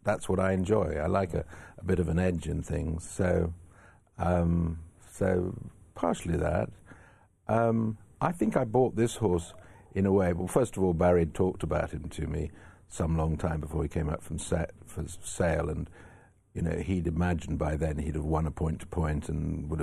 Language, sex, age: English, male, 60-79